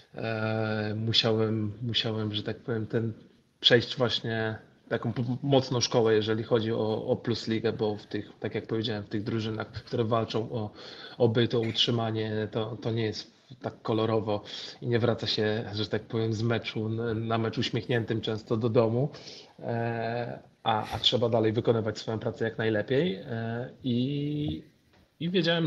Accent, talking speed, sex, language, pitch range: native, 145 wpm, male, Polish, 105-120 Hz